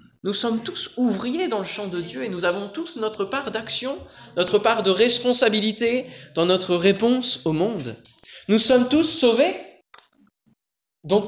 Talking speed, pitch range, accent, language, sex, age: 160 wpm, 140-210 Hz, French, French, male, 20-39